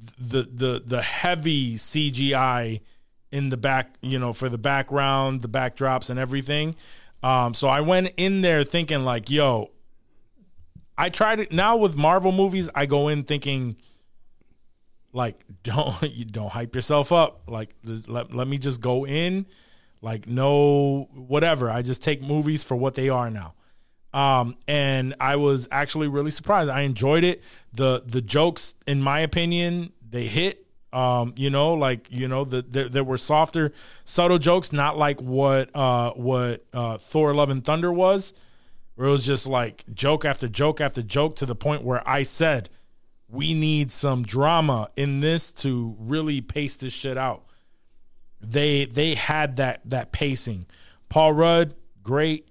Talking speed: 160 wpm